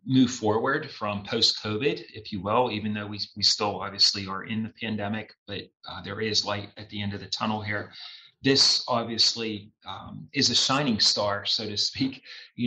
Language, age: English, 30-49